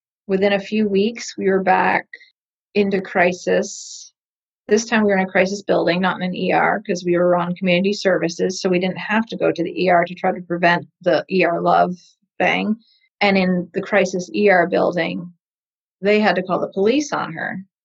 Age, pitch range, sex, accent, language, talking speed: 30-49, 180-210 Hz, female, American, English, 195 wpm